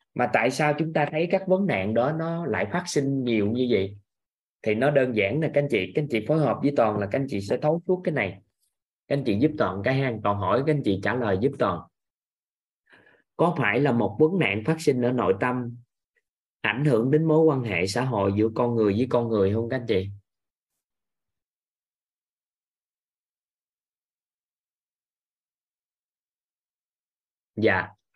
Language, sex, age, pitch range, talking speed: Vietnamese, male, 20-39, 110-150 Hz, 185 wpm